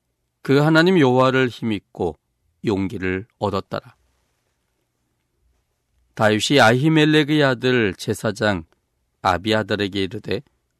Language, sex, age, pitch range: Korean, male, 40-59, 85-130 Hz